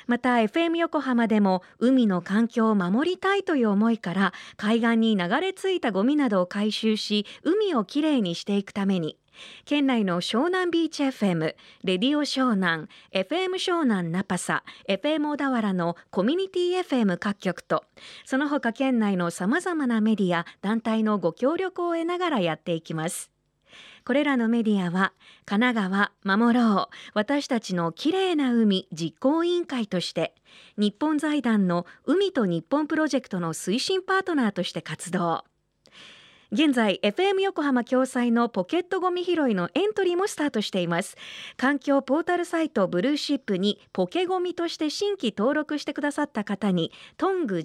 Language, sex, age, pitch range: Japanese, female, 40-59, 195-305 Hz